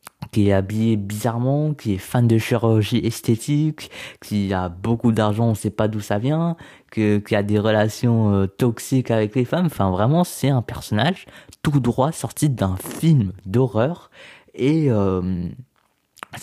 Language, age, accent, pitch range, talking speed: French, 20-39, French, 95-125 Hz, 155 wpm